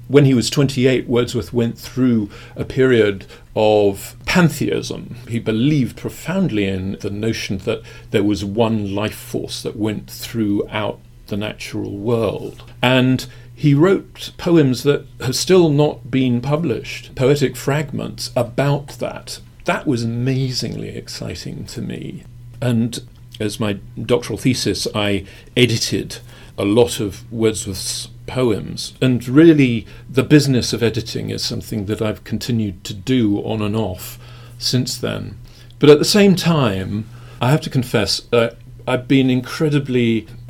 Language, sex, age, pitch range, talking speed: English, male, 40-59, 110-130 Hz, 140 wpm